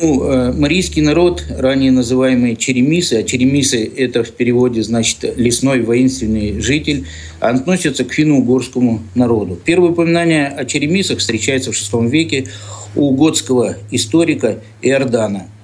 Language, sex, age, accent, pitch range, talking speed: Russian, male, 50-69, native, 115-145 Hz, 120 wpm